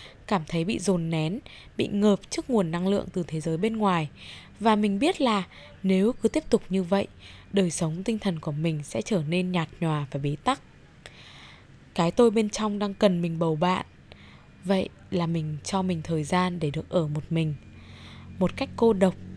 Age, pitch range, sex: 20-39, 170-230 Hz, female